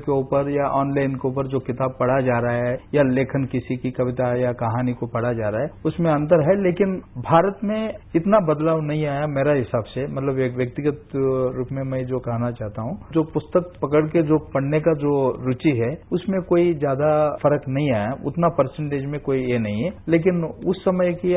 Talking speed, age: 210 wpm, 50-69